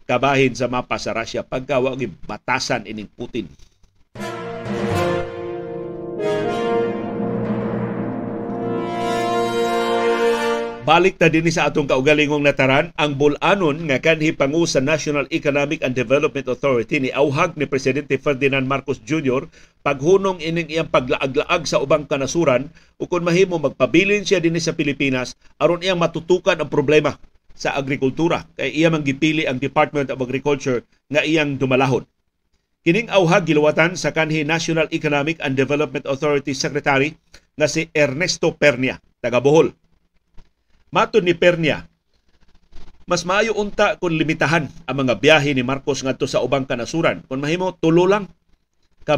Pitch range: 130-165 Hz